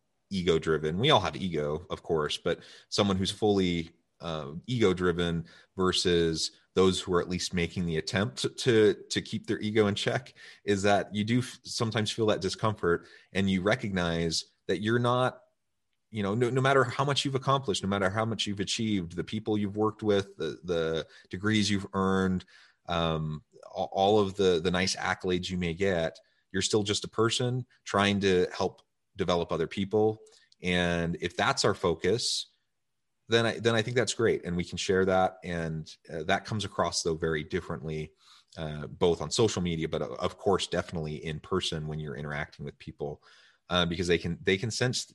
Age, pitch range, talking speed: 30-49, 80-105 Hz, 185 wpm